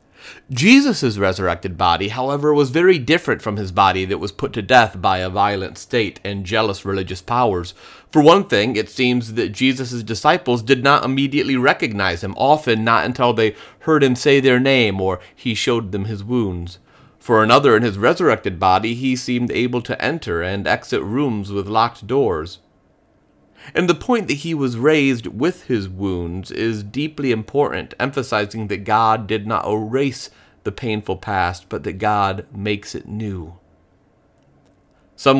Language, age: English, 30-49